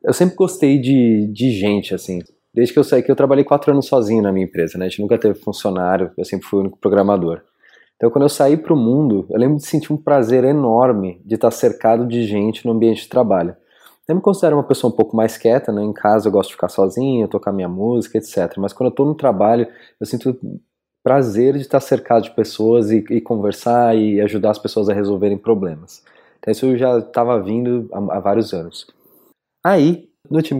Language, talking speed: Portuguese, 220 wpm